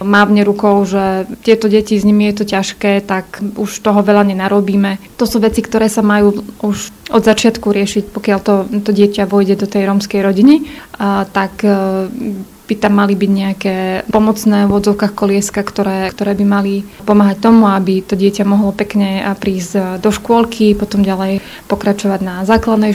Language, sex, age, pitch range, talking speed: Slovak, female, 20-39, 195-215 Hz, 165 wpm